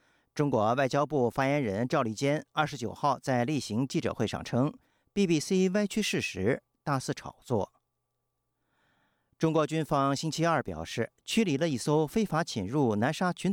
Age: 50-69